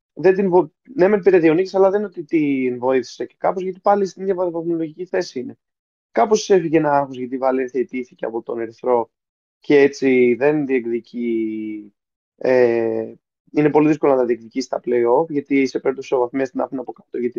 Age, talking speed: 20-39, 185 wpm